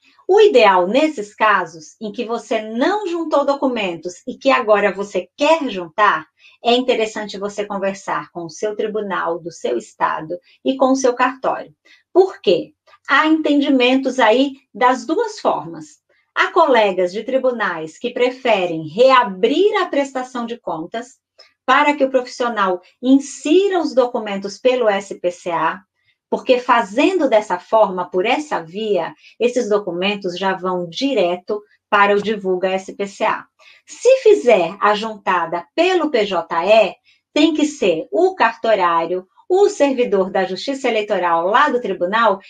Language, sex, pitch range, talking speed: Portuguese, female, 205-275 Hz, 135 wpm